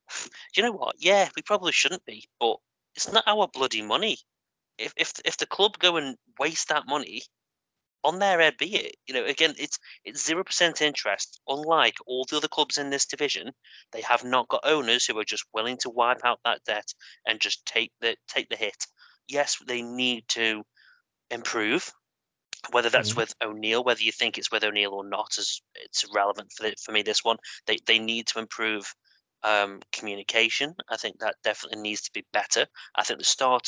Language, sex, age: English, male, 30-49